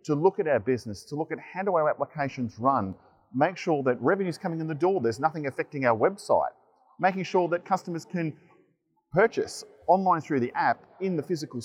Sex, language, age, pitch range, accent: male, Chinese, 30-49, 130-180 Hz, Australian